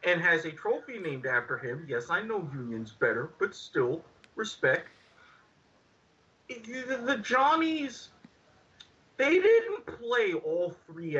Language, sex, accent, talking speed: English, male, American, 120 wpm